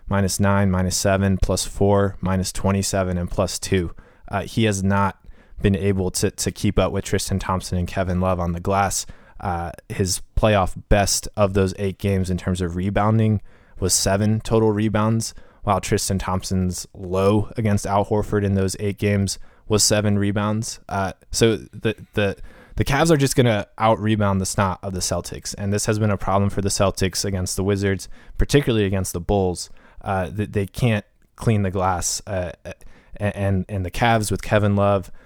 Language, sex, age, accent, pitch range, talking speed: English, male, 20-39, American, 95-105 Hz, 180 wpm